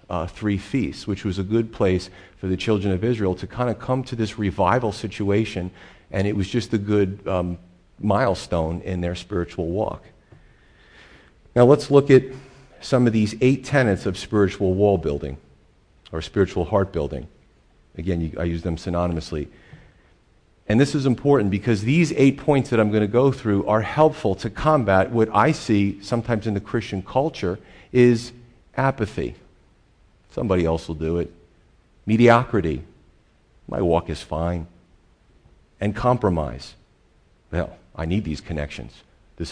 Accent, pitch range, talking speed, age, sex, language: American, 85-120 Hz, 155 wpm, 40-59, male, English